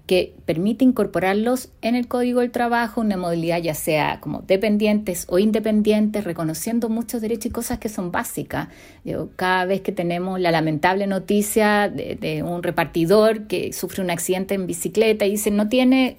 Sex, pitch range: female, 180-225 Hz